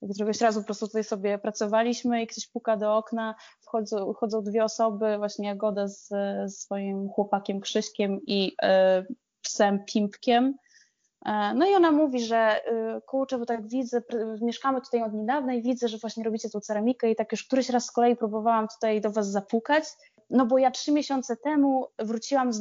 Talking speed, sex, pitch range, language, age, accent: 185 wpm, female, 215-255 Hz, Polish, 20-39, native